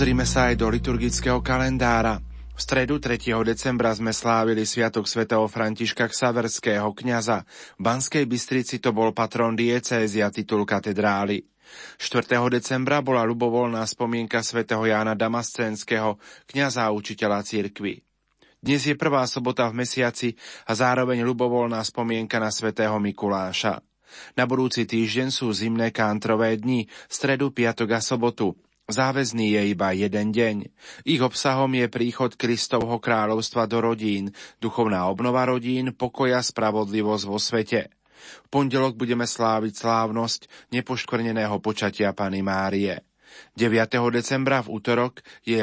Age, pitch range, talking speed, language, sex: 30-49, 110-125 Hz, 125 wpm, Slovak, male